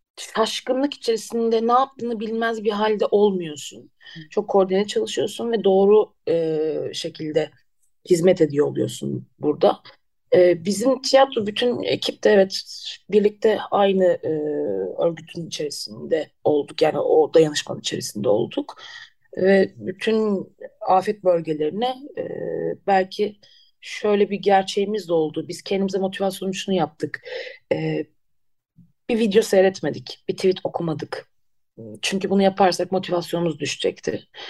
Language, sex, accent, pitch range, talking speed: Turkish, female, native, 175-225 Hz, 115 wpm